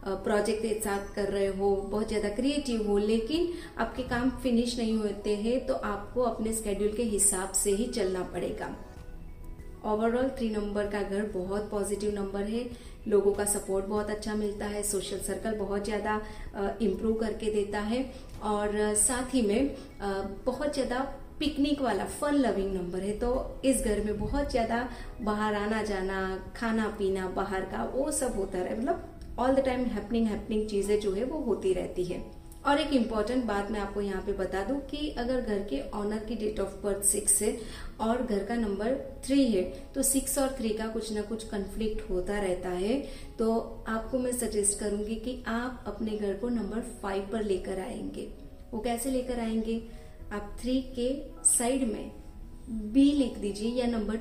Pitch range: 200-245 Hz